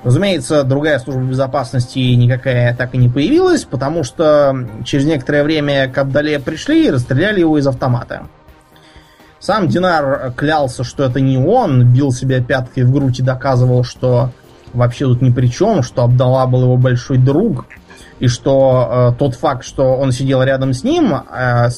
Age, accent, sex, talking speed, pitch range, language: 20-39, native, male, 165 wpm, 120-135 Hz, Russian